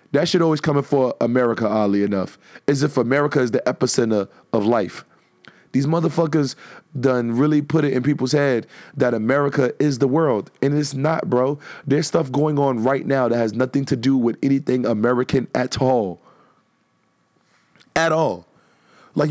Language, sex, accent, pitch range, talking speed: English, male, American, 130-170 Hz, 165 wpm